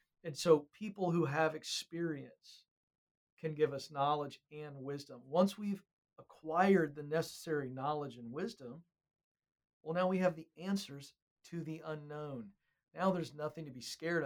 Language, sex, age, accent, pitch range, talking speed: English, male, 50-69, American, 150-180 Hz, 145 wpm